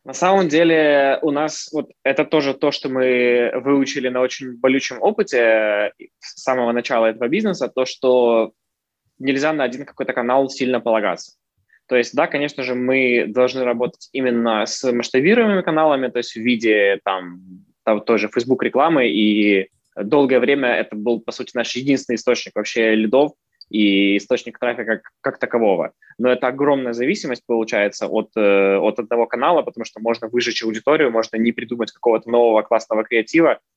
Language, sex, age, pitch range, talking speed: Russian, male, 20-39, 110-135 Hz, 155 wpm